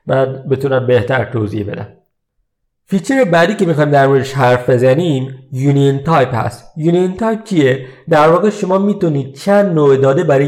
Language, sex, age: Persian, male, 50-69